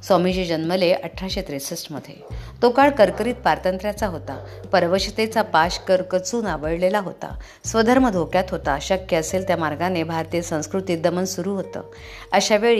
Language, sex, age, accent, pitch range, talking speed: Marathi, female, 50-69, native, 165-195 Hz, 105 wpm